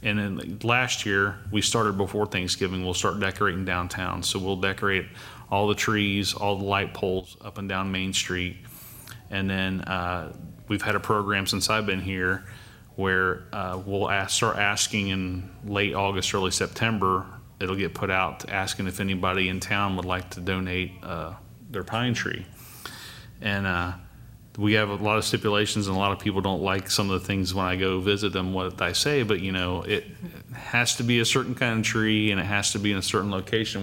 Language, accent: English, American